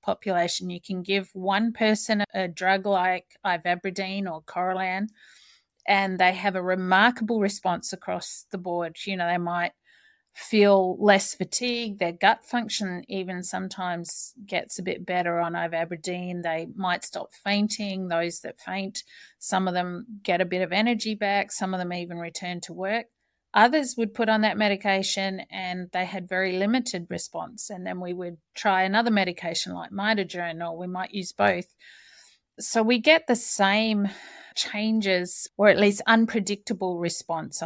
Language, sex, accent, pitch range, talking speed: English, female, Australian, 180-215 Hz, 160 wpm